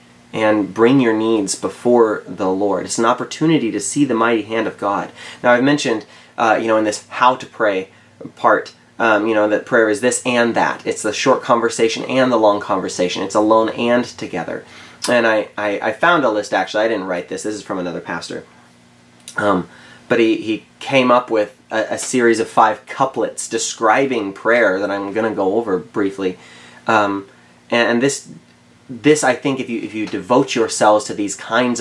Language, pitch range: English, 100-120 Hz